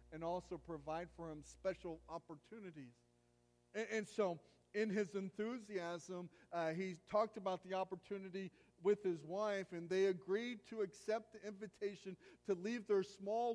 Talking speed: 145 wpm